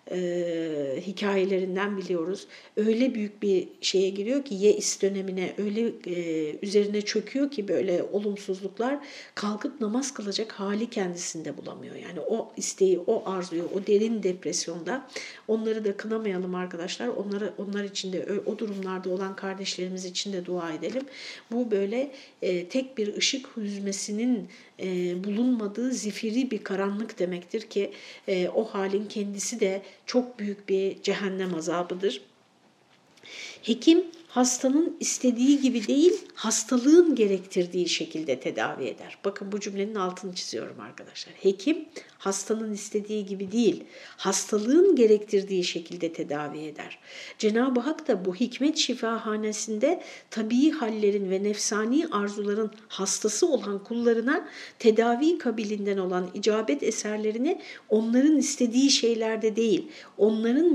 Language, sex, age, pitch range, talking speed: Turkish, female, 60-79, 195-245 Hz, 120 wpm